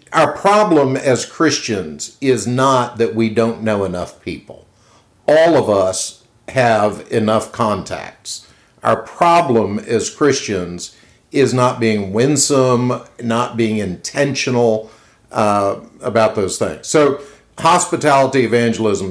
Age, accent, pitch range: 50-69, American, 110-125 Hz